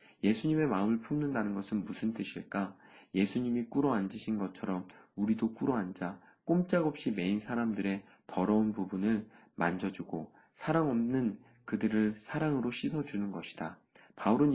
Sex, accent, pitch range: male, native, 100-135 Hz